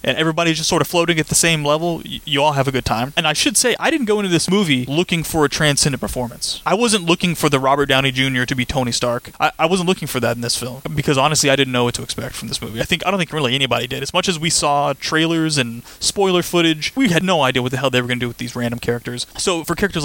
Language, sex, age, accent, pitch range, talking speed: English, male, 30-49, American, 135-200 Hz, 295 wpm